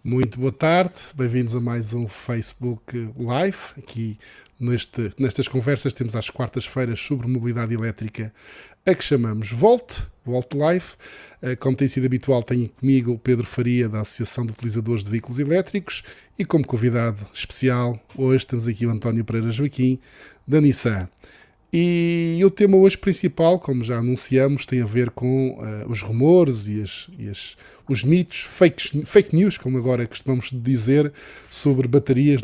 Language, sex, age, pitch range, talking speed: Portuguese, male, 20-39, 120-145 Hz, 150 wpm